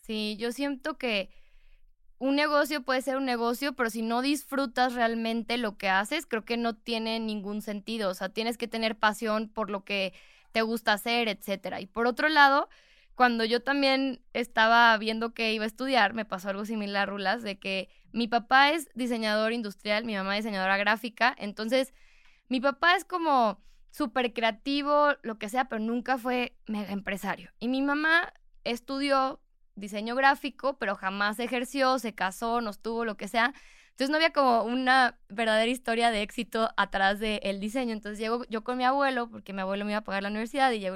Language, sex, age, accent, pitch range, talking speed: Spanish, female, 10-29, Mexican, 210-260 Hz, 190 wpm